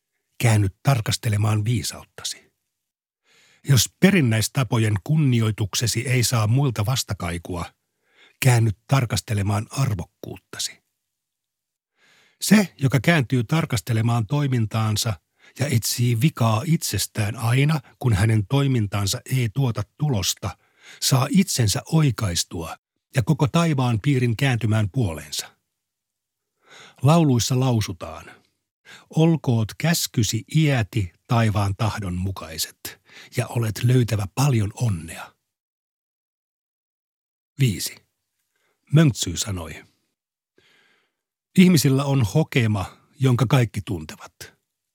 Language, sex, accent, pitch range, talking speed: Finnish, male, native, 110-140 Hz, 80 wpm